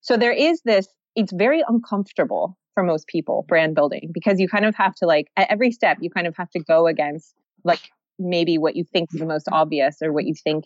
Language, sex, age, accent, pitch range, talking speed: English, female, 20-39, American, 165-215 Hz, 235 wpm